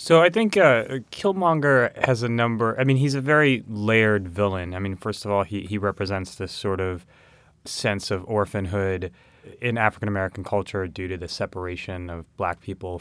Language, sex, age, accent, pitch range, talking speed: English, male, 20-39, American, 95-115 Hz, 180 wpm